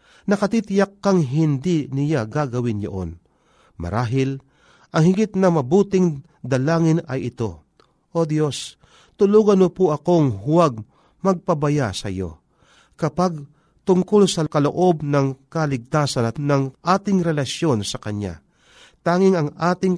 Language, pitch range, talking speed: Filipino, 120-175 Hz, 115 wpm